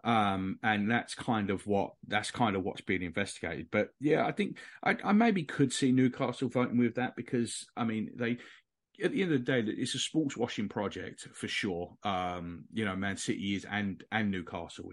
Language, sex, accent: English, male, British